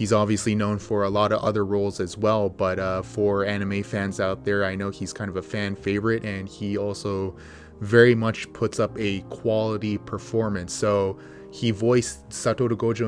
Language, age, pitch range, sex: English, 20-39, 100-115 Hz, male